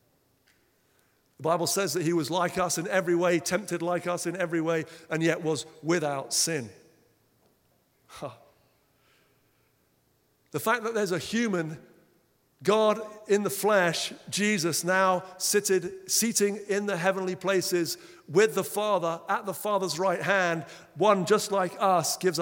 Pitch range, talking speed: 150-185 Hz, 140 wpm